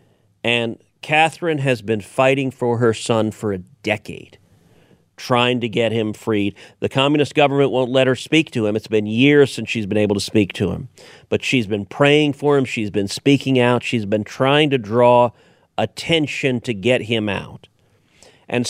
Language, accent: English, American